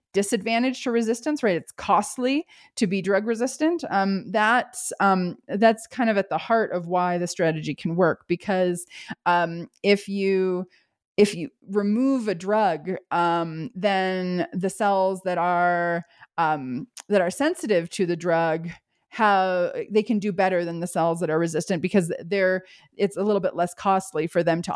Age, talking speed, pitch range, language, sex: 30-49, 165 wpm, 175-215 Hz, English, female